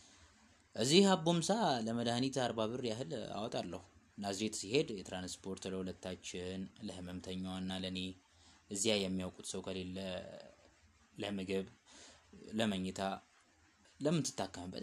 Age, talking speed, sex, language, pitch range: 20-39, 75 wpm, male, Amharic, 90-130 Hz